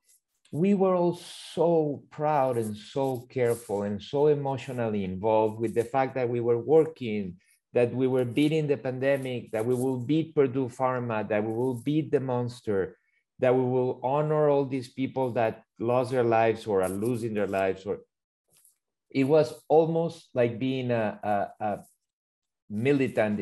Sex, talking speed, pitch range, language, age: male, 155 wpm, 115-150 Hz, English, 50-69